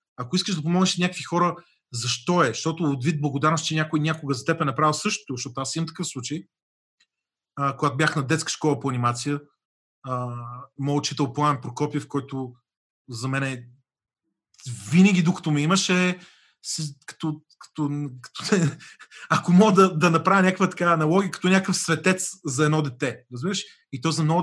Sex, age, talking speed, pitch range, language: male, 30-49, 165 wpm, 145-185 Hz, Bulgarian